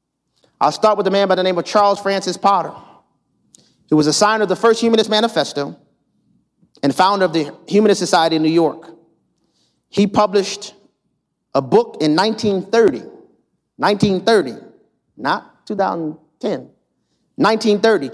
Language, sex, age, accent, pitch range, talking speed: English, male, 40-59, American, 180-240 Hz, 130 wpm